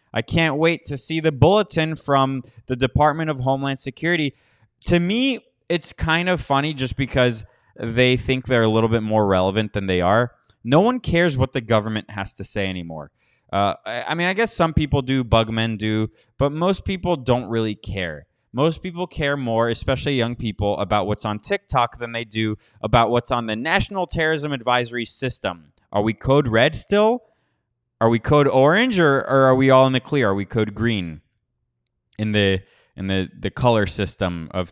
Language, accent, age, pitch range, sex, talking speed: English, American, 20-39, 110-150 Hz, male, 185 wpm